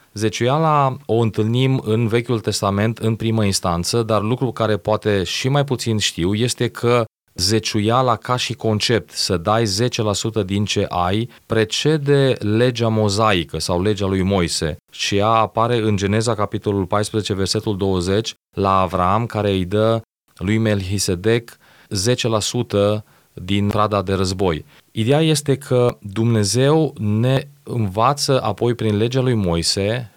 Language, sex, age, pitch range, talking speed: Romanian, male, 30-49, 105-125 Hz, 135 wpm